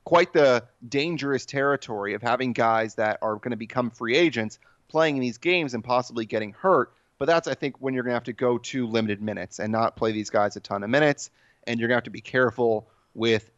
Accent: American